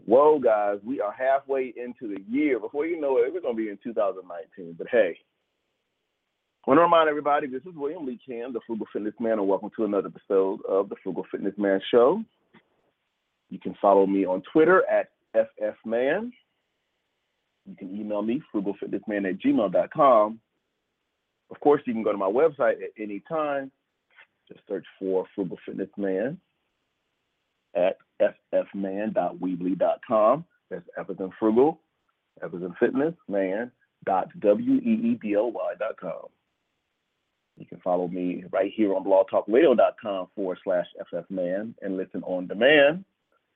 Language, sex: English, male